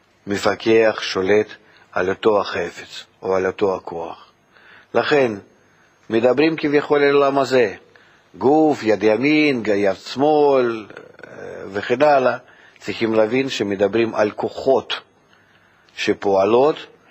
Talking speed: 100 wpm